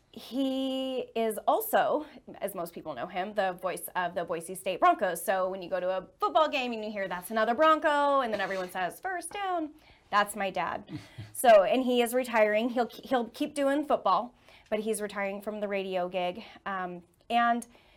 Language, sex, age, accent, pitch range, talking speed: English, female, 30-49, American, 185-240 Hz, 190 wpm